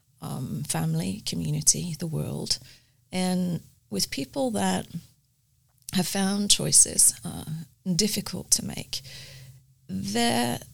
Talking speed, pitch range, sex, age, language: 95 wpm, 140-190 Hz, female, 30-49, English